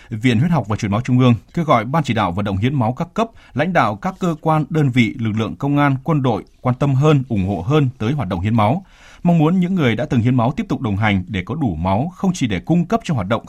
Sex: male